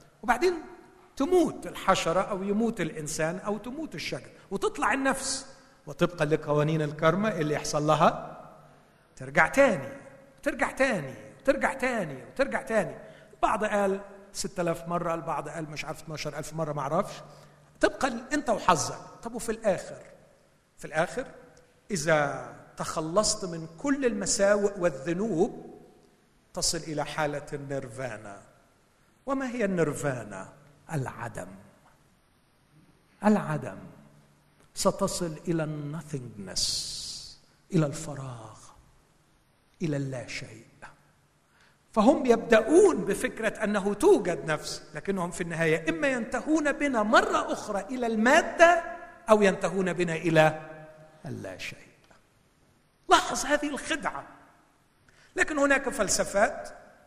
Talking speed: 105 wpm